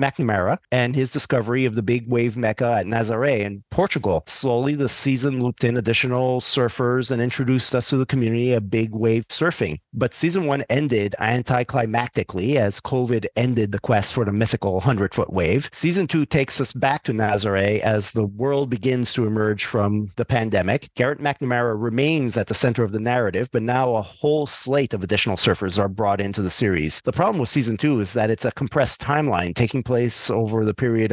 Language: English